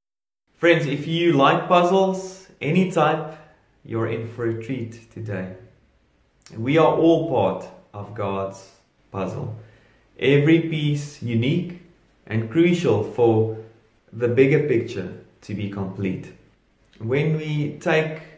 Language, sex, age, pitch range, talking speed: English, male, 30-49, 110-140 Hz, 115 wpm